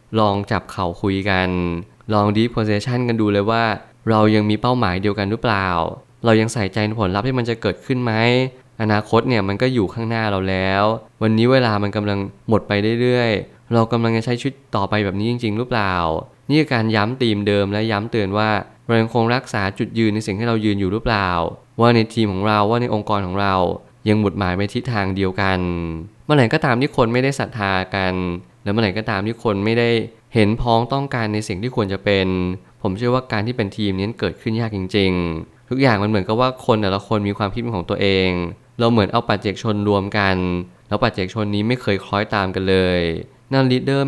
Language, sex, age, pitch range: Thai, male, 20-39, 100-115 Hz